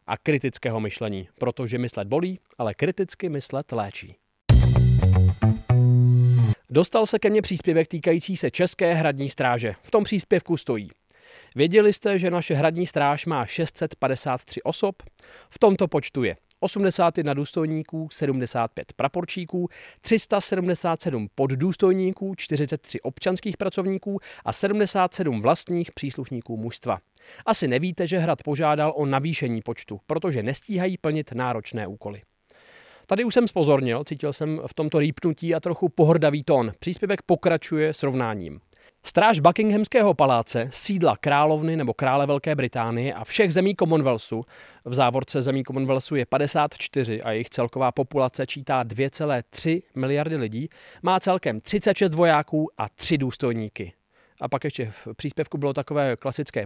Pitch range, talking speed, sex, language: 125-175 Hz, 130 wpm, male, Czech